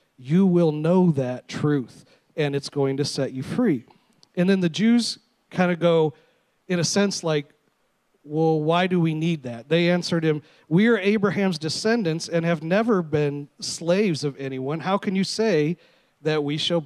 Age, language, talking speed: 40-59, English, 180 wpm